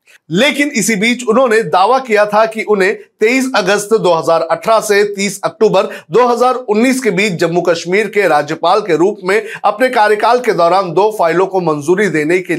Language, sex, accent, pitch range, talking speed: Hindi, male, native, 170-220 Hz, 165 wpm